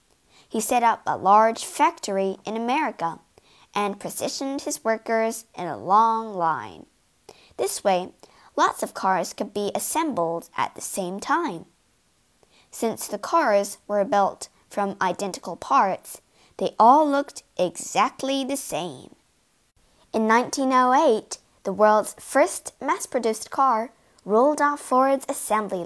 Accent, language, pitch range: American, Chinese, 200-280 Hz